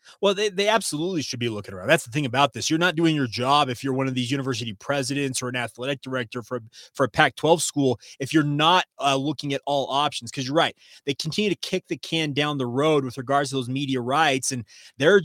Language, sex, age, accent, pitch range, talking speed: English, male, 30-49, American, 140-175 Hz, 245 wpm